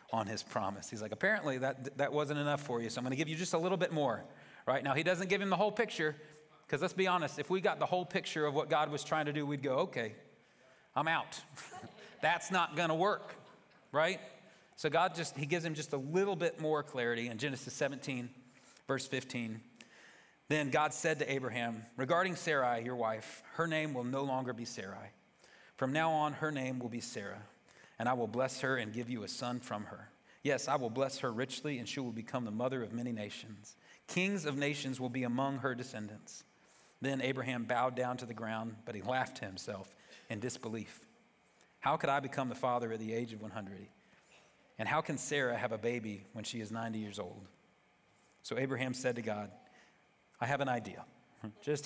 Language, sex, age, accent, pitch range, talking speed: English, male, 40-59, American, 120-155 Hz, 210 wpm